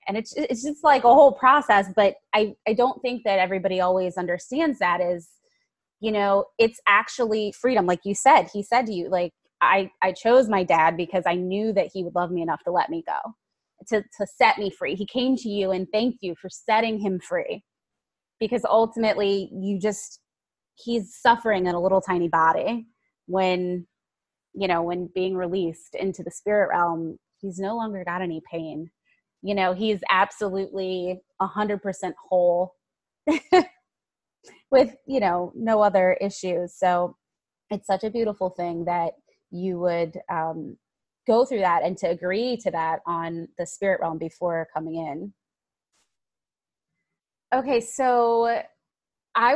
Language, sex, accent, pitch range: English, female, American, 180-225 Hz